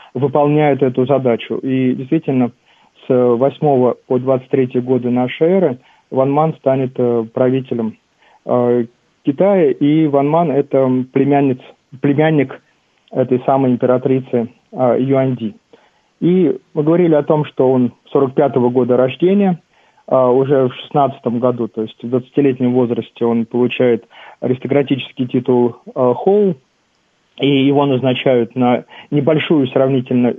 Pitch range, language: 125-145 Hz, Russian